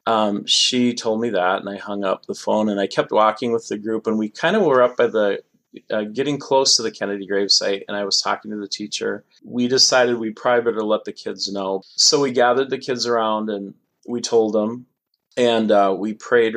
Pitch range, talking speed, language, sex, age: 100-120 Hz, 230 wpm, English, male, 30-49